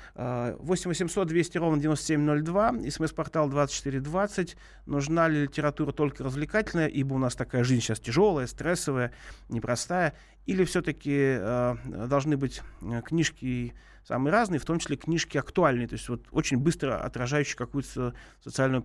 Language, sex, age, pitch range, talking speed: Russian, male, 30-49, 125-155 Hz, 135 wpm